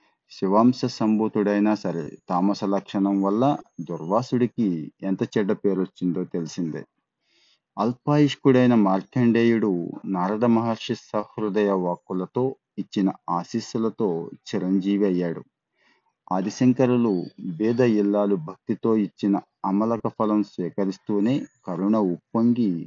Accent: native